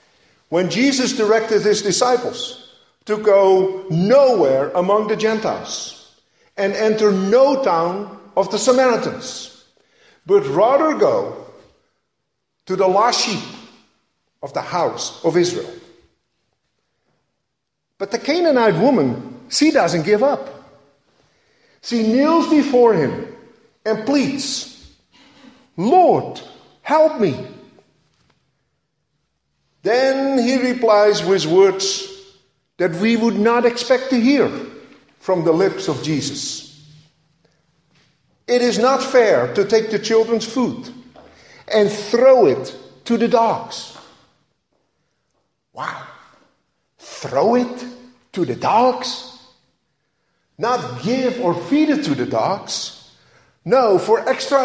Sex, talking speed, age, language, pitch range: male, 105 wpm, 50-69, English, 205-265 Hz